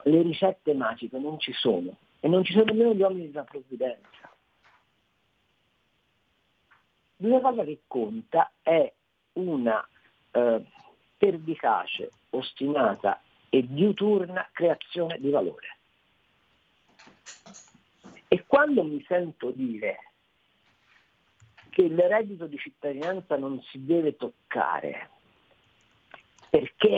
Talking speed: 100 wpm